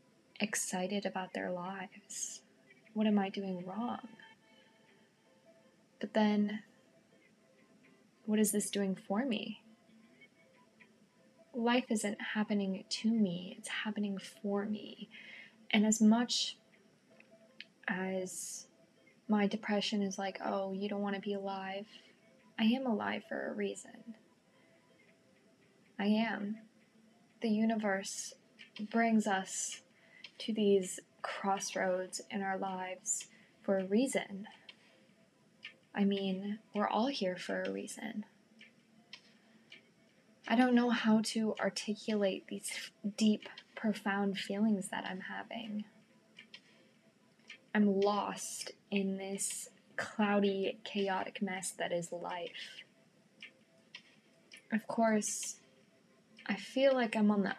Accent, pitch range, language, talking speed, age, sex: American, 195-225 Hz, English, 105 wpm, 10-29, female